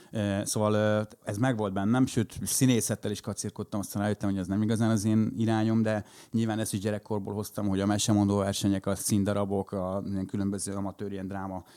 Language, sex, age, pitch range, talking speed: Hungarian, male, 30-49, 100-120 Hz, 175 wpm